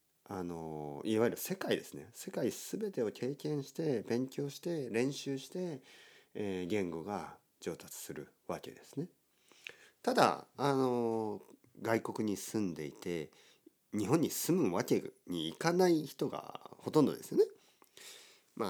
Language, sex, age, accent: Japanese, male, 40-59, native